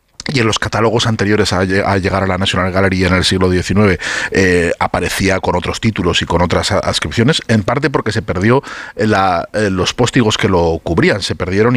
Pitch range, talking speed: 95-115 Hz, 195 wpm